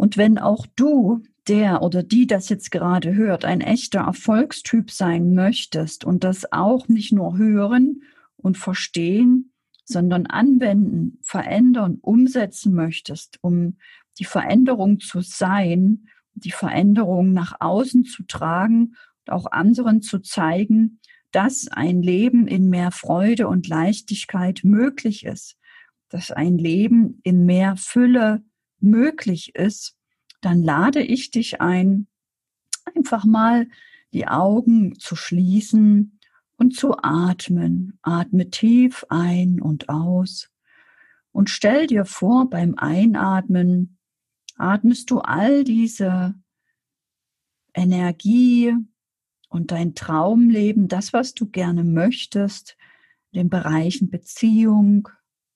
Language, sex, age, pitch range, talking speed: German, female, 50-69, 180-235 Hz, 115 wpm